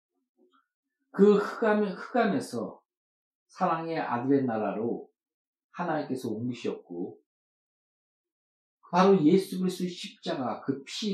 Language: Korean